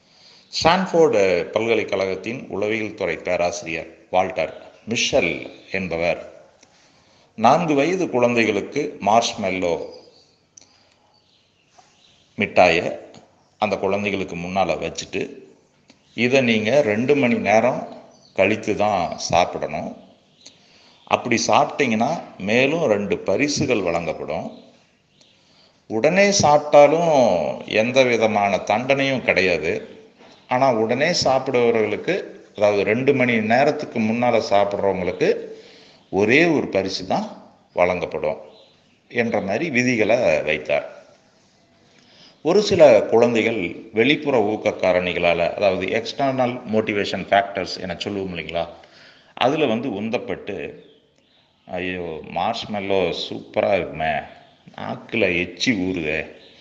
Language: Tamil